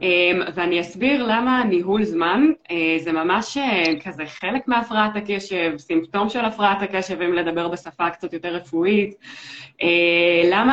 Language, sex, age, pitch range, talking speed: Hebrew, female, 20-39, 170-215 Hz, 145 wpm